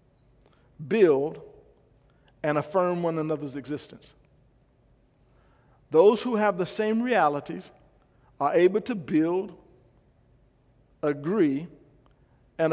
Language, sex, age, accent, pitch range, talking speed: English, male, 50-69, American, 140-195 Hz, 85 wpm